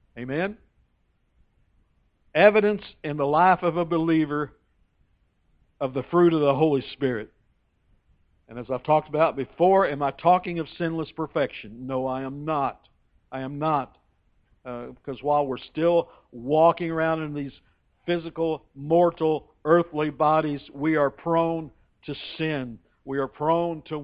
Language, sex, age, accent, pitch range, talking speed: English, male, 60-79, American, 120-165 Hz, 140 wpm